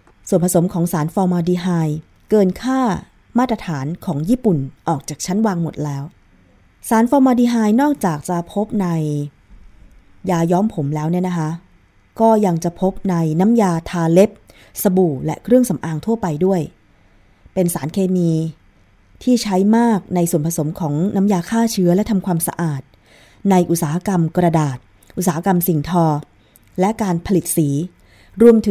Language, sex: Thai, female